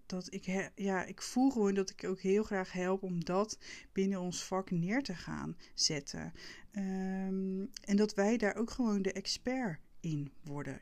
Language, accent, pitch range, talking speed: Dutch, Dutch, 185-215 Hz, 185 wpm